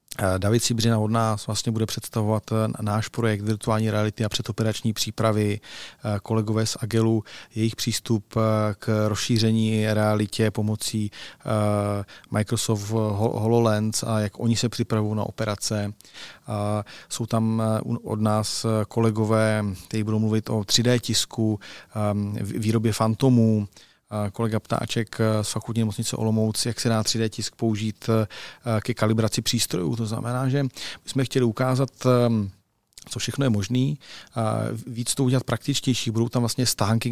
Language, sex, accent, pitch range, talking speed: Czech, male, native, 110-120 Hz, 130 wpm